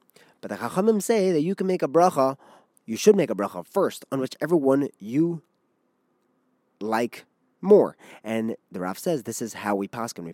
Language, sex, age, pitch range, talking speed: English, male, 30-49, 110-150 Hz, 185 wpm